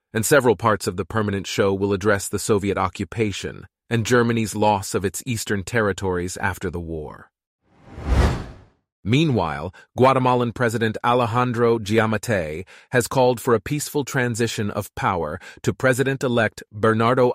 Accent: American